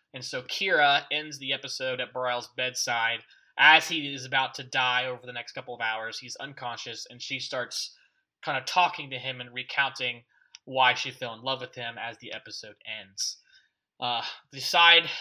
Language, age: English, 20-39